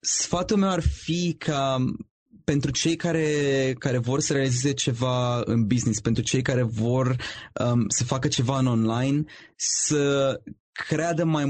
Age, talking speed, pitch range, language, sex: 20-39, 145 wpm, 125-150 Hz, Romanian, male